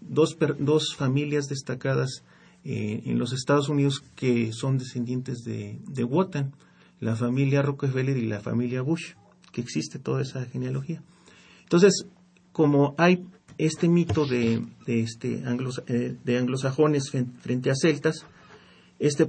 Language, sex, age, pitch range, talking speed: Spanish, male, 40-59, 125-160 Hz, 140 wpm